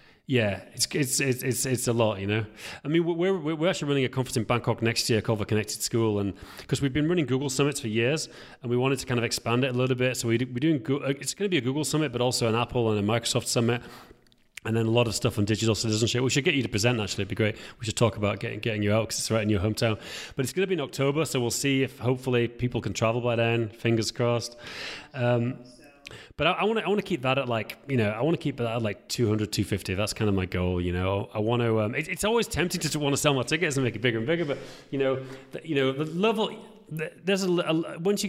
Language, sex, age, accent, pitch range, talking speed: English, male, 30-49, British, 110-145 Hz, 280 wpm